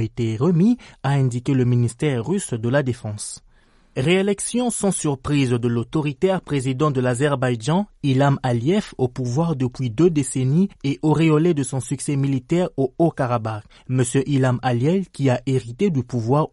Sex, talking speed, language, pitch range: male, 150 wpm, French, 125-165 Hz